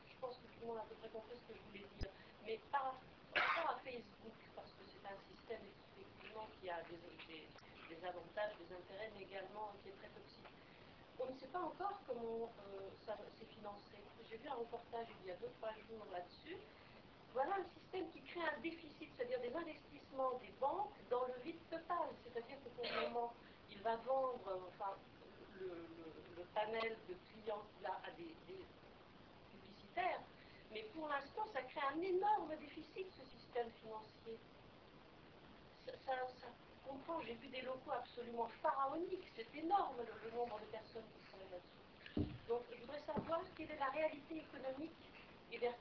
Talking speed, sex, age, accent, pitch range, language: 180 wpm, female, 40-59, French, 220-310 Hz, French